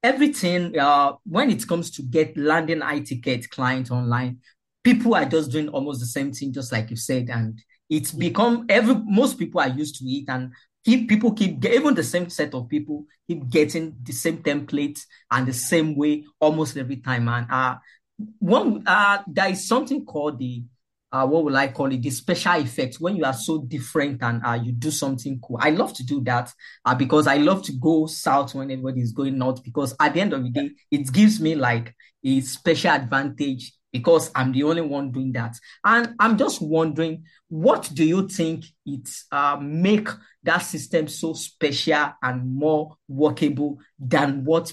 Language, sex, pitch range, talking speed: English, male, 130-165 Hz, 190 wpm